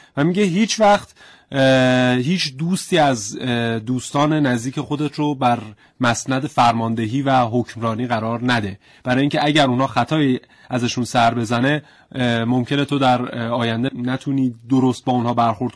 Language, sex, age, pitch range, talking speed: Persian, male, 30-49, 115-140 Hz, 130 wpm